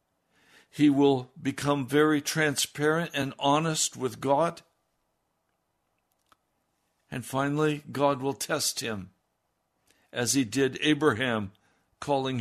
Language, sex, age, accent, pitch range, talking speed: English, male, 60-79, American, 120-150 Hz, 95 wpm